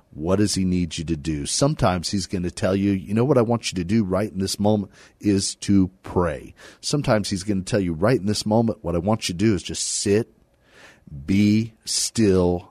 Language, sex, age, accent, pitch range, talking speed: English, male, 50-69, American, 80-100 Hz, 230 wpm